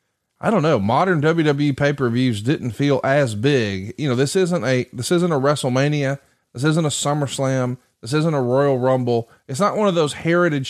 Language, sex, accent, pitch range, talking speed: English, male, American, 125-165 Hz, 190 wpm